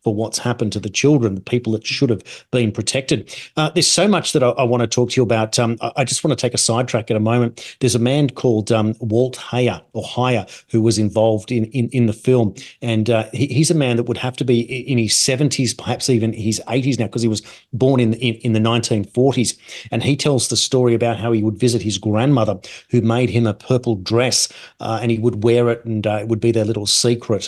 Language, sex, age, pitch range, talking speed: English, male, 40-59, 110-125 Hz, 250 wpm